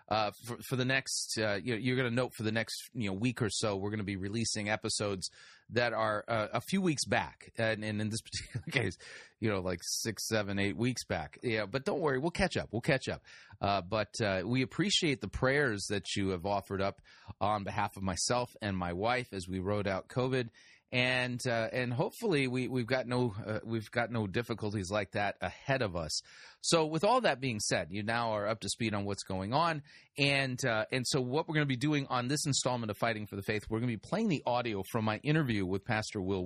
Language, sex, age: English, male, 30-49